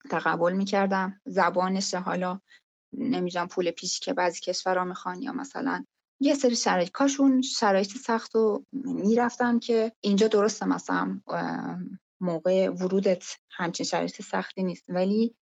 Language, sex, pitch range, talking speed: Persian, female, 180-235 Hz, 125 wpm